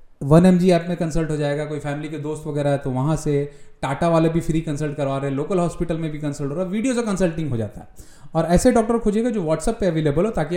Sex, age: male, 30-49